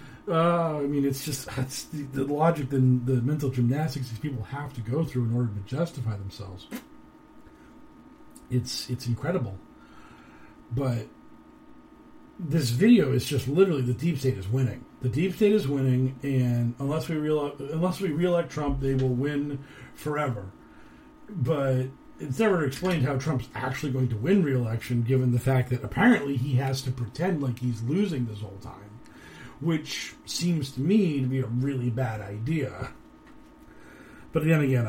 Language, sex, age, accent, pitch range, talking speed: English, male, 40-59, American, 120-155 Hz, 165 wpm